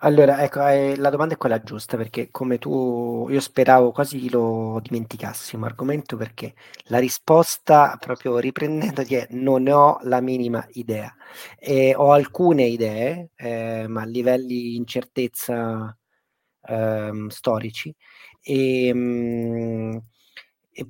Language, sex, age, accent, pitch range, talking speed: Italian, male, 30-49, native, 115-135 Hz, 120 wpm